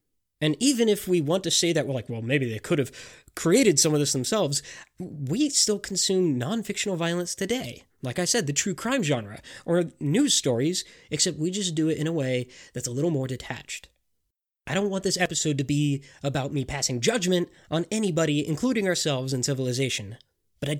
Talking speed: 195 wpm